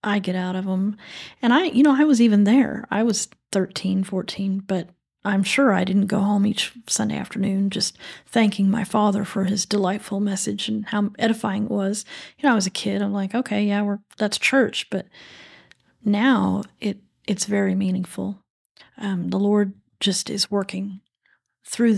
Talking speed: 180 wpm